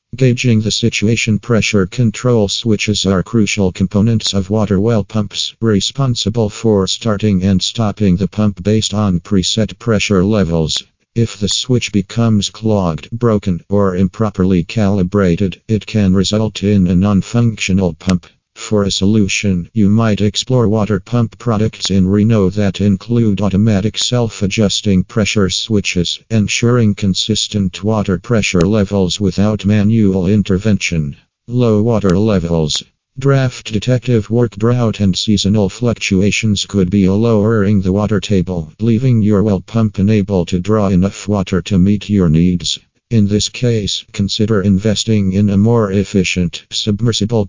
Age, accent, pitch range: 50-69, American, 95-110 Hz